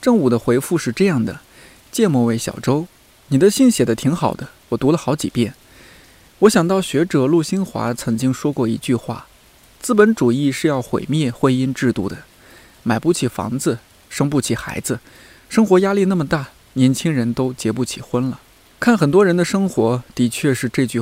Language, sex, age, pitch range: Chinese, male, 20-39, 120-155 Hz